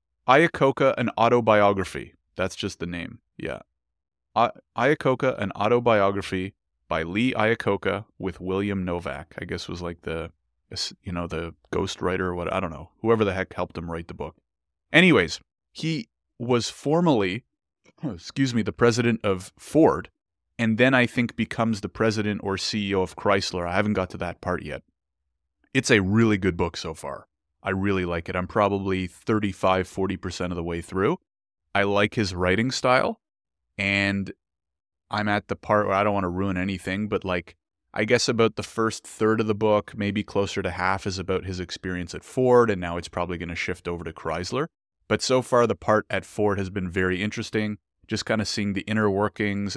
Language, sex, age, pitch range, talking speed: English, male, 30-49, 90-110 Hz, 185 wpm